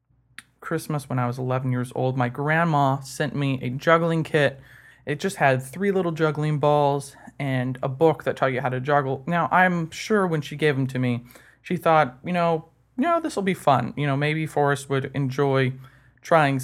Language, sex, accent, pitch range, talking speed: English, male, American, 130-165 Hz, 200 wpm